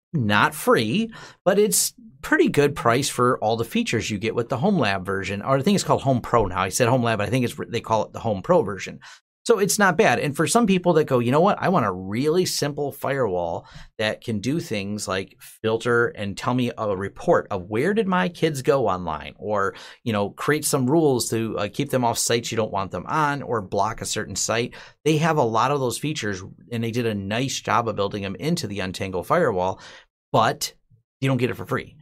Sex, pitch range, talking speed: male, 105-145 Hz, 235 wpm